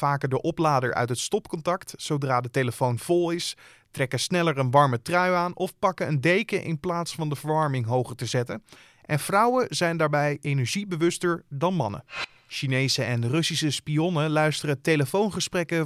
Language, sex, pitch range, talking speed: Dutch, male, 130-170 Hz, 160 wpm